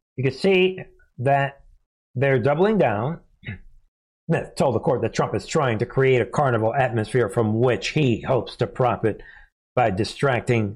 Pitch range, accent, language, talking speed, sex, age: 115-150 Hz, American, English, 155 wpm, male, 60-79